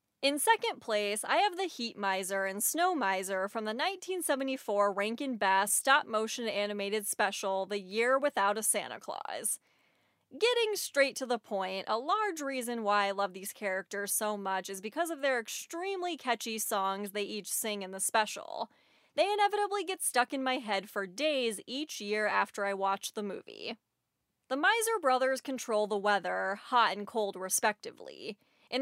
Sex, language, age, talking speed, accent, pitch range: female, English, 20-39, 170 wpm, American, 200-295 Hz